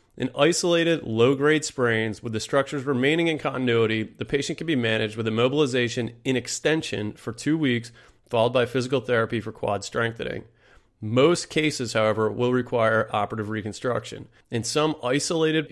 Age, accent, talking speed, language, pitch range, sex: 30-49, American, 150 wpm, English, 110-140 Hz, male